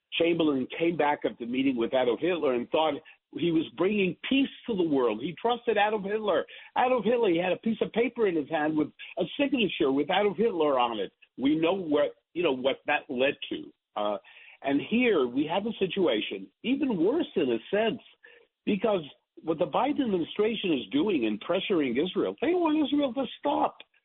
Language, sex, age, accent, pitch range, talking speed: English, male, 60-79, American, 170-260 Hz, 190 wpm